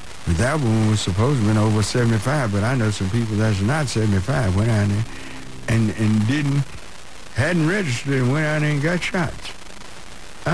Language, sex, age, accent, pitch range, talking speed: English, male, 60-79, American, 105-155 Hz, 190 wpm